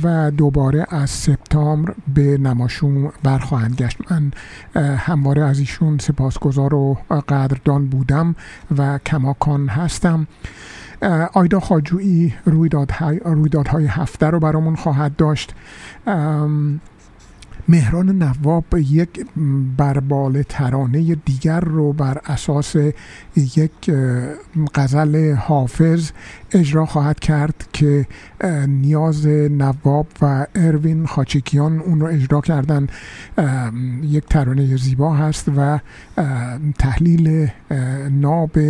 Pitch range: 140-165 Hz